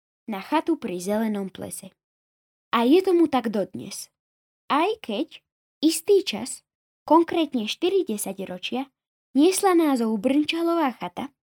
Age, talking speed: 10-29, 110 wpm